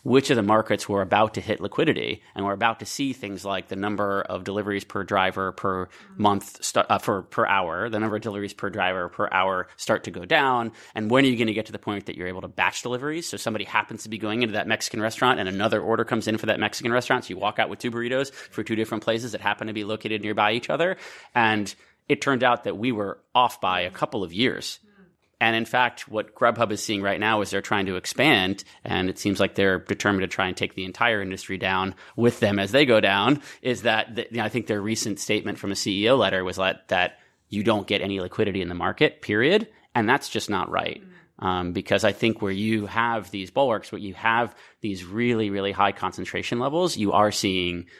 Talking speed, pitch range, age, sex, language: 240 wpm, 95-115 Hz, 30-49, male, English